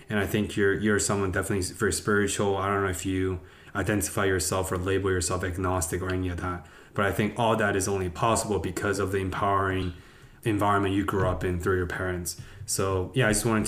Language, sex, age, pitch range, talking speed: English, male, 20-39, 95-105 Hz, 215 wpm